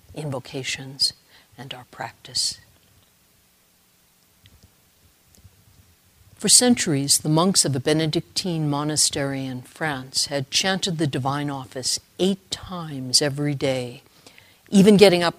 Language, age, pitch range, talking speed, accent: English, 60-79, 125-160 Hz, 100 wpm, American